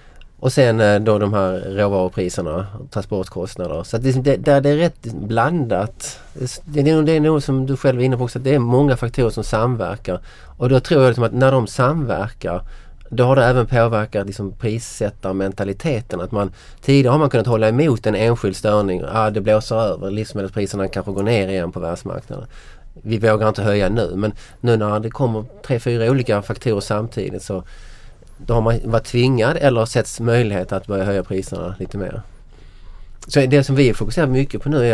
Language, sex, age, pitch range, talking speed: Swedish, male, 30-49, 100-125 Hz, 185 wpm